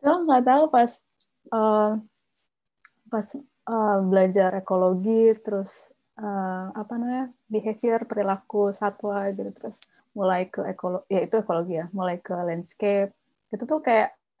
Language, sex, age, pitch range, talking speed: Indonesian, female, 20-39, 185-215 Hz, 130 wpm